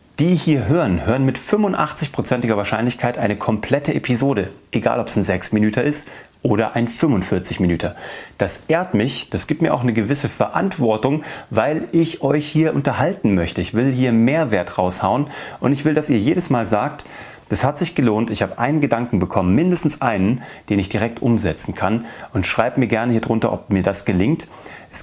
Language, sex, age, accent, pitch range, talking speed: German, male, 30-49, German, 100-135 Hz, 180 wpm